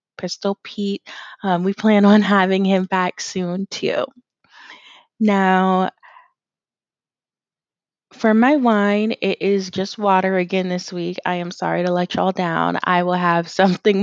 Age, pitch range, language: 20-39, 175-220 Hz, English